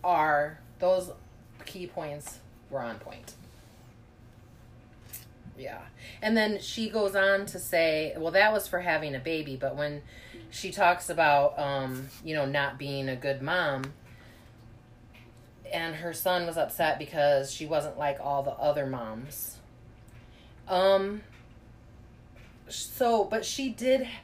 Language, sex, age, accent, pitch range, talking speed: English, female, 30-49, American, 120-195 Hz, 130 wpm